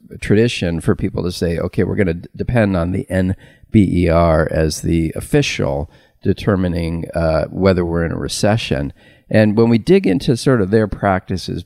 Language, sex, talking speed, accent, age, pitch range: English, male, 170 wpm, American, 40-59, 90-110 Hz